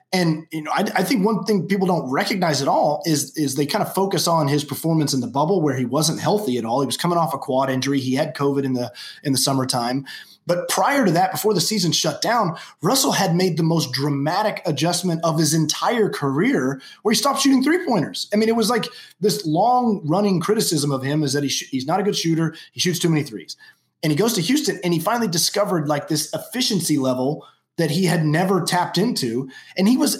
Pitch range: 145-200 Hz